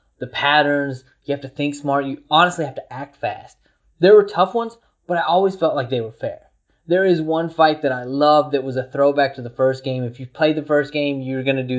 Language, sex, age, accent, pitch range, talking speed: English, male, 20-39, American, 130-165 Hz, 260 wpm